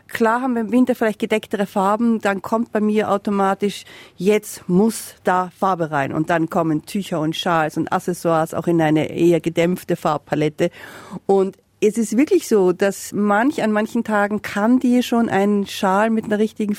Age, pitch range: 50-69, 170-215 Hz